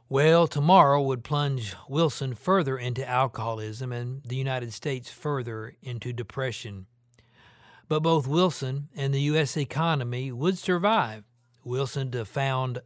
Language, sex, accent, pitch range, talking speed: English, male, American, 120-140 Hz, 120 wpm